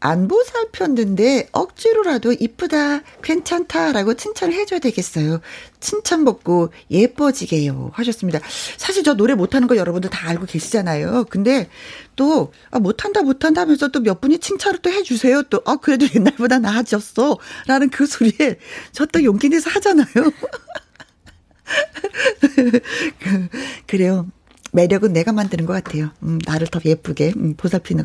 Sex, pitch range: female, 175-285 Hz